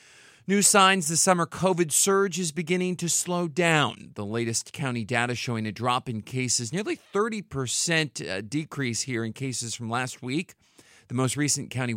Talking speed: 165 wpm